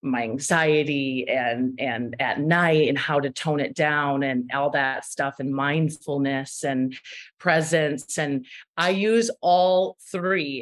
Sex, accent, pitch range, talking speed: female, American, 145-165 Hz, 140 wpm